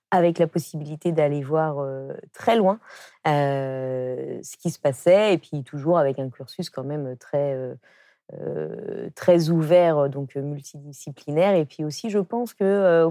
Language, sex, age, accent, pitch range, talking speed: French, female, 20-39, French, 145-185 Hz, 155 wpm